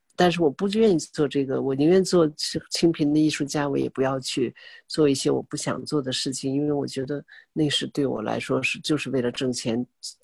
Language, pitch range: Chinese, 135-165 Hz